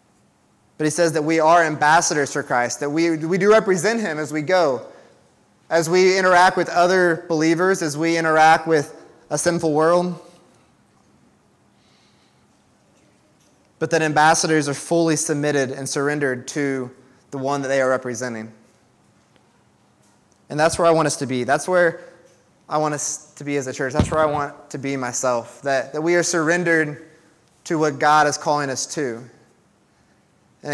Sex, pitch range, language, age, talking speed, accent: male, 145-175 Hz, English, 20-39, 165 wpm, American